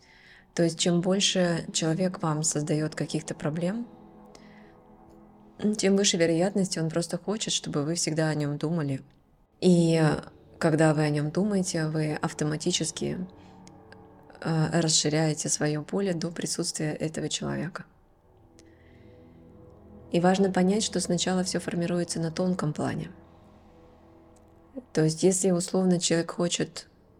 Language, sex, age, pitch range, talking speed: Russian, female, 20-39, 150-180 Hz, 115 wpm